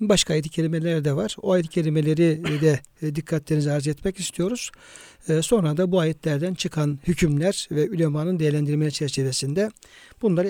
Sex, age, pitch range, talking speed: male, 60-79, 150-175 Hz, 135 wpm